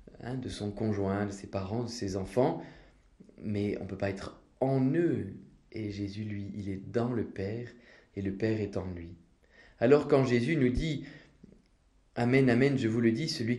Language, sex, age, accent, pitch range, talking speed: French, male, 20-39, French, 100-125 Hz, 195 wpm